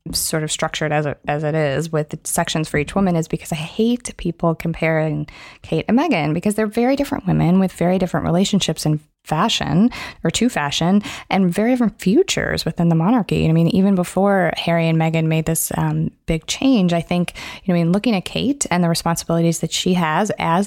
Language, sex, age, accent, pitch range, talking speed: English, female, 20-39, American, 165-205 Hz, 205 wpm